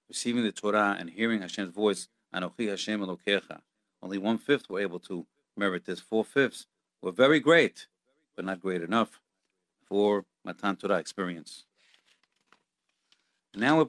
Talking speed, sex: 145 wpm, male